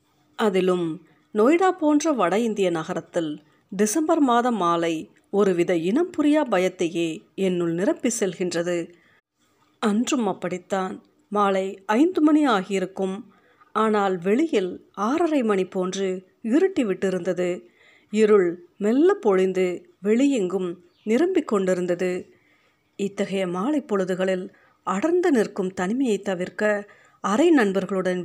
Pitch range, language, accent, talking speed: 185-240 Hz, Tamil, native, 85 wpm